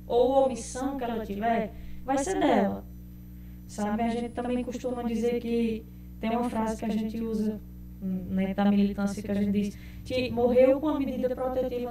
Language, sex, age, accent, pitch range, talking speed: Portuguese, female, 10-29, Brazilian, 200-250 Hz, 185 wpm